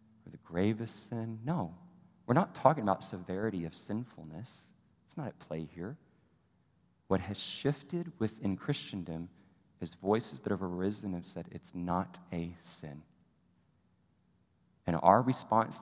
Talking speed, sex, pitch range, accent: 135 wpm, male, 90-110 Hz, American